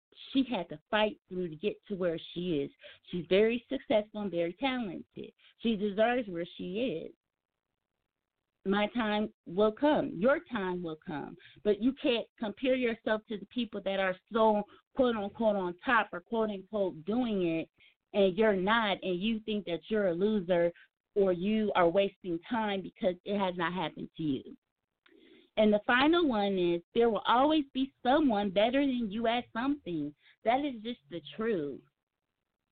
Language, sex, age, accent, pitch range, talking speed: English, female, 30-49, American, 185-230 Hz, 170 wpm